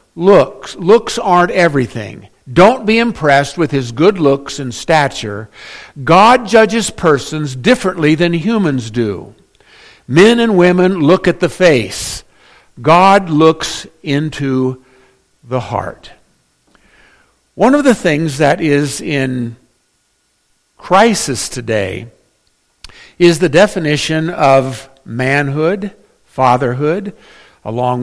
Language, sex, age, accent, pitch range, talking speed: English, male, 60-79, American, 135-185 Hz, 105 wpm